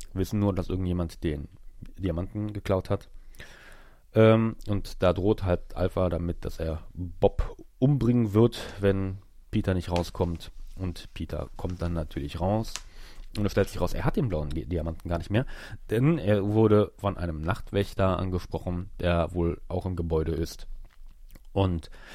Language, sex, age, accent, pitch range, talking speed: German, male, 30-49, German, 80-100 Hz, 155 wpm